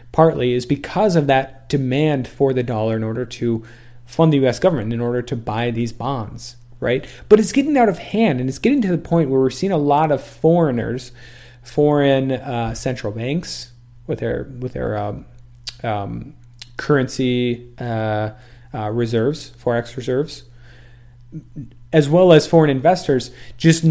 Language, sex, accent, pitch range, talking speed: English, male, American, 120-155 Hz, 160 wpm